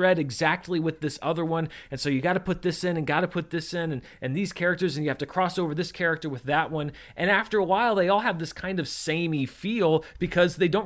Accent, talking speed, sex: American, 270 wpm, male